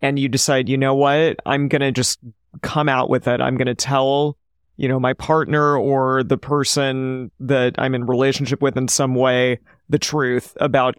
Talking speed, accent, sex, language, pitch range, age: 195 wpm, American, male, English, 125-140 Hz, 30-49